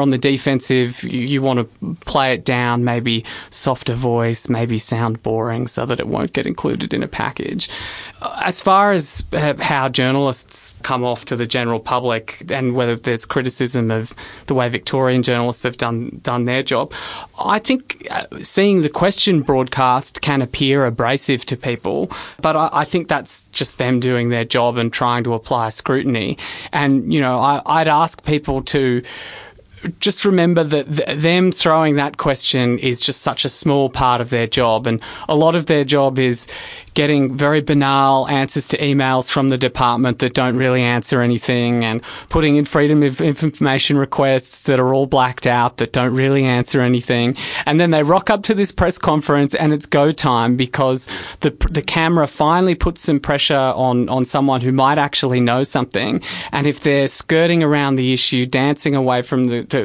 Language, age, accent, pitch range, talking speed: English, 20-39, Australian, 125-145 Hz, 180 wpm